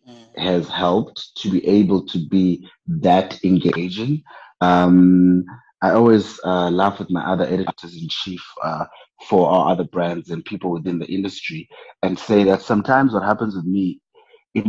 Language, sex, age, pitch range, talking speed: English, male, 30-49, 85-100 Hz, 160 wpm